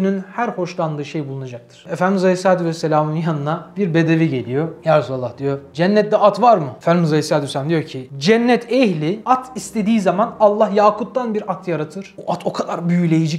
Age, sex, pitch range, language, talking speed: 30-49, male, 150-195 Hz, Turkish, 170 wpm